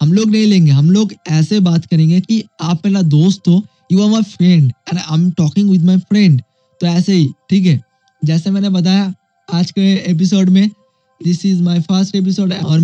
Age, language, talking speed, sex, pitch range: 20-39, Hindi, 80 wpm, male, 155-180 Hz